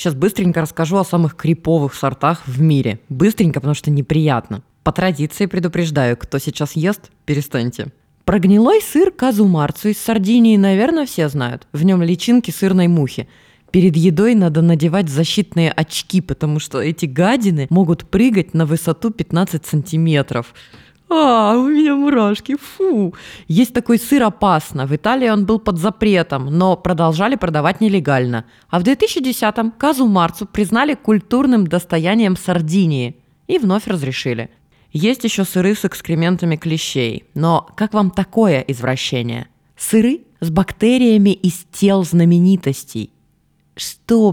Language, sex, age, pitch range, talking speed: Russian, female, 20-39, 150-210 Hz, 135 wpm